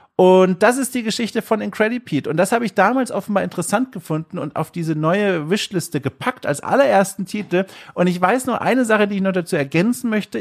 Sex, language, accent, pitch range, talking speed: male, German, German, 155-205 Hz, 210 wpm